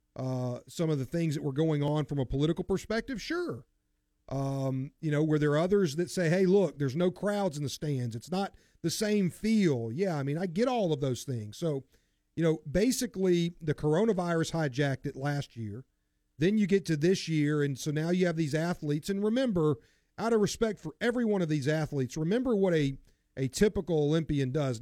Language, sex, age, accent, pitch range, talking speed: English, male, 40-59, American, 140-185 Hz, 205 wpm